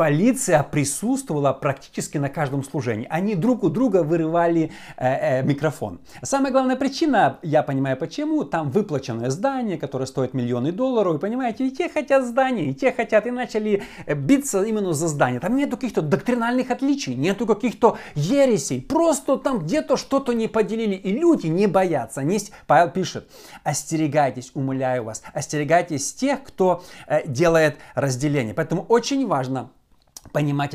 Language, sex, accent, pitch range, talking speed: Russian, male, native, 145-215 Hz, 150 wpm